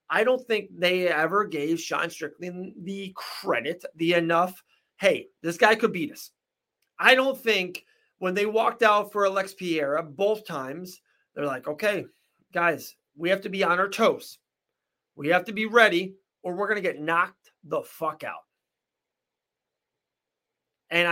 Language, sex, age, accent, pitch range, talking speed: English, male, 30-49, American, 175-220 Hz, 160 wpm